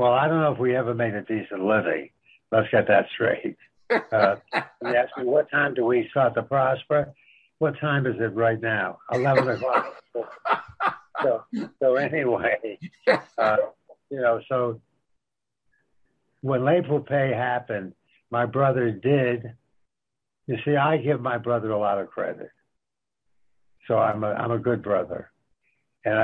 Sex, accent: male, American